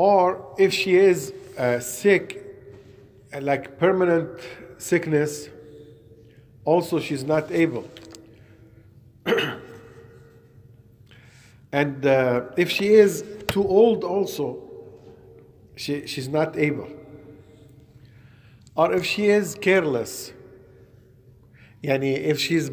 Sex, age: male, 50-69